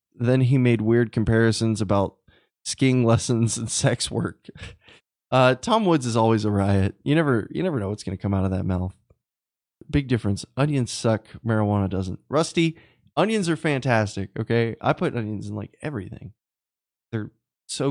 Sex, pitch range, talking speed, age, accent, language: male, 105-140 Hz, 170 wpm, 20-39, American, English